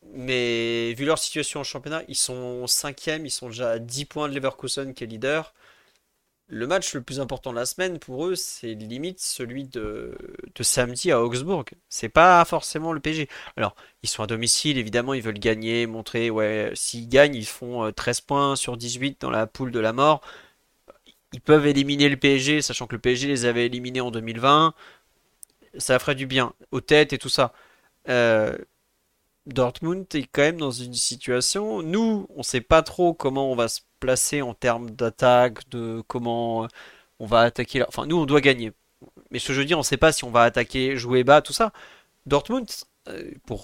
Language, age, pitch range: French, 30-49, 120-150 Hz